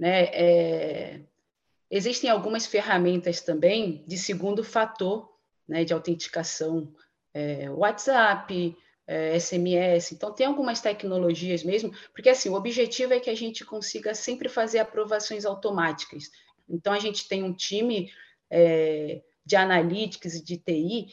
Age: 40-59